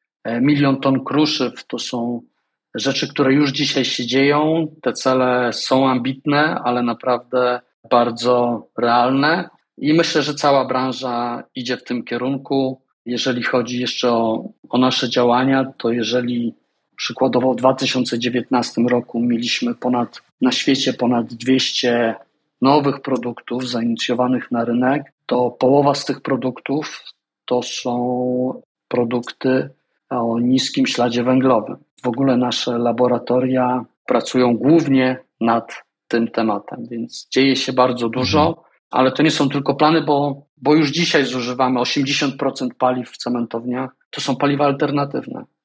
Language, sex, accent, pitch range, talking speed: Polish, male, native, 120-135 Hz, 130 wpm